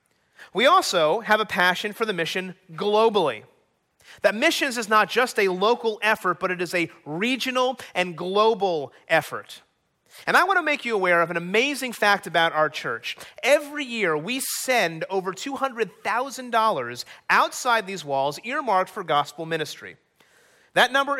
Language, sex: English, male